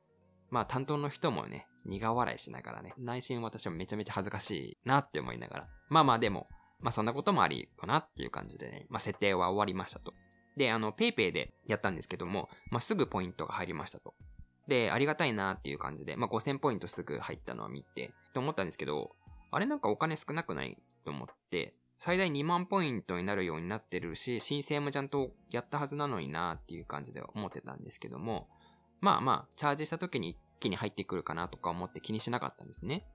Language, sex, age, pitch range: Japanese, male, 20-39, 90-145 Hz